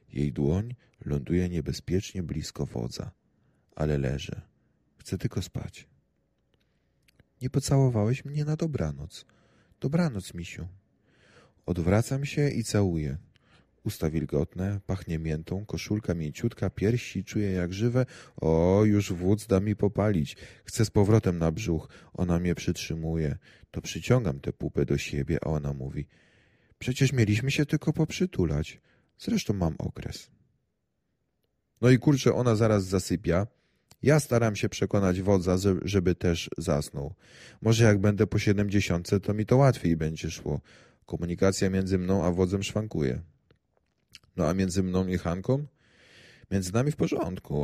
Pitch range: 80-110 Hz